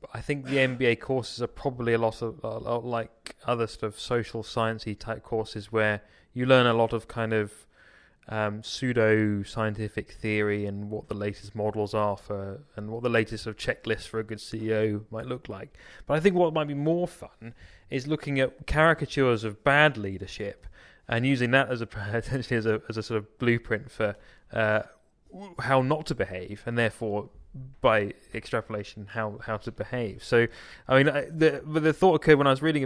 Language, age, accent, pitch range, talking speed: English, 20-39, British, 110-140 Hz, 195 wpm